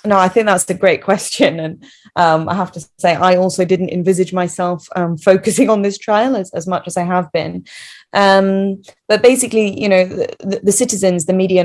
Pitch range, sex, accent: 170-195 Hz, female, British